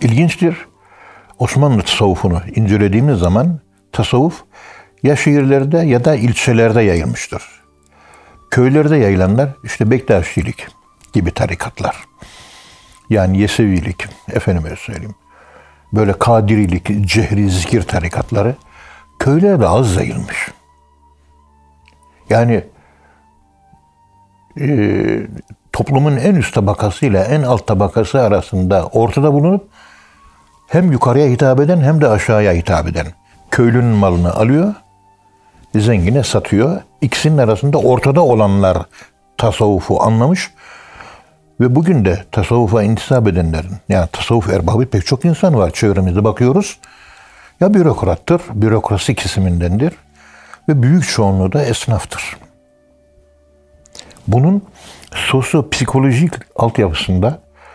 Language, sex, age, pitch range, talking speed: Turkish, male, 60-79, 95-135 Hz, 90 wpm